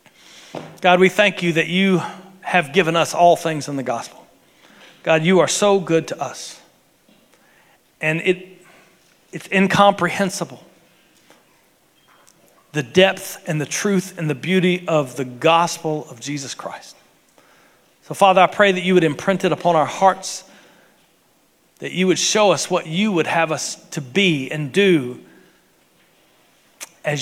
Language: English